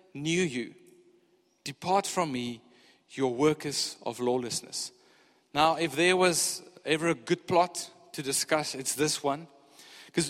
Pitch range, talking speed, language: 155-215 Hz, 135 wpm, English